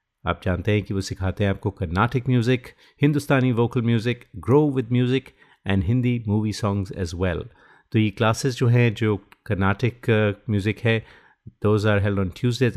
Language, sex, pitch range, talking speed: Hindi, male, 100-120 Hz, 175 wpm